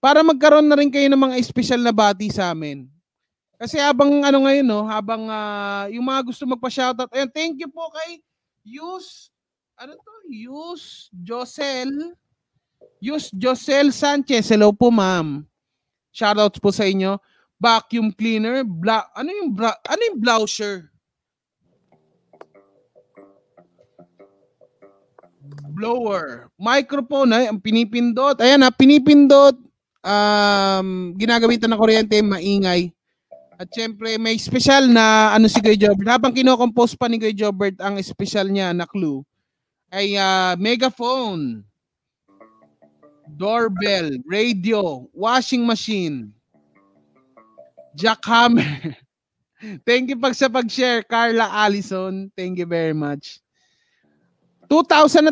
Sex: male